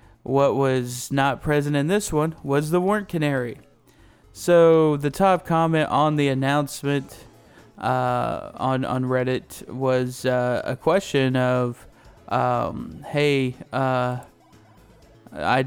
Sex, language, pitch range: male, English, 125-145 Hz